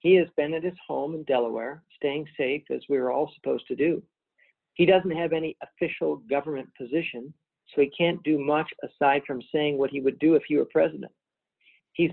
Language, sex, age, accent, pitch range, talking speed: English, male, 50-69, American, 140-165 Hz, 205 wpm